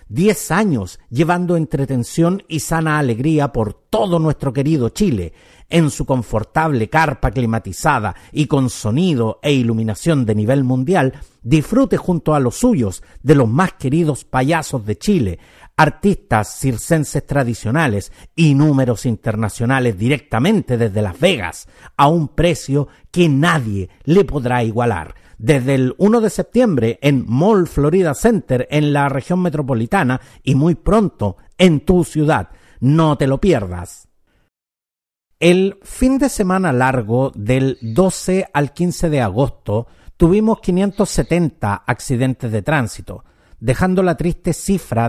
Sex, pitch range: male, 115-170 Hz